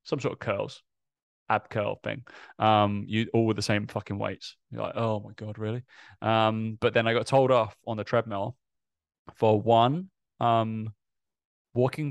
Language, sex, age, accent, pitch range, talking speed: English, male, 20-39, British, 105-120 Hz, 175 wpm